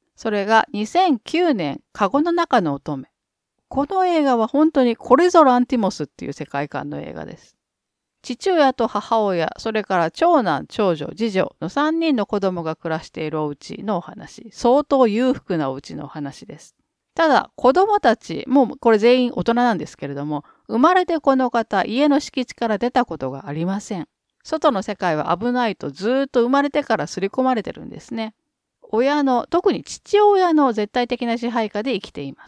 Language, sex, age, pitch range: Japanese, female, 40-59, 170-280 Hz